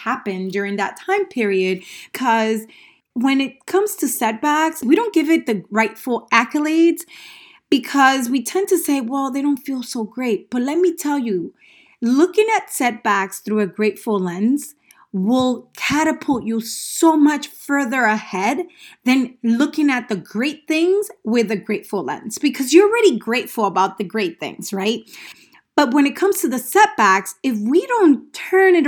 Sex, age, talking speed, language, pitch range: female, 30-49, 160 wpm, English, 225-320 Hz